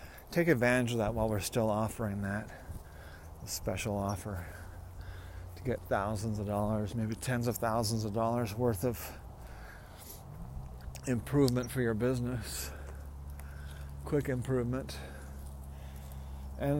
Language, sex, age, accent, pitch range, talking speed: English, male, 40-59, American, 100-145 Hz, 115 wpm